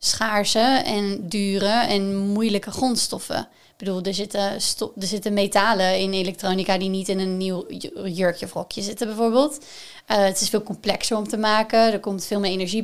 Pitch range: 200-230 Hz